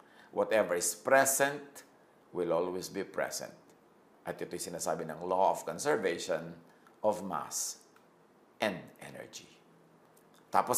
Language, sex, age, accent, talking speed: English, male, 50-69, Filipino, 105 wpm